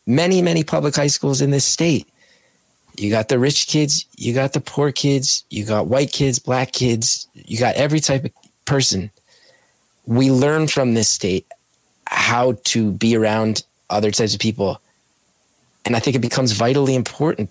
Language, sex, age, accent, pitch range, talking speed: English, male, 30-49, American, 105-140 Hz, 170 wpm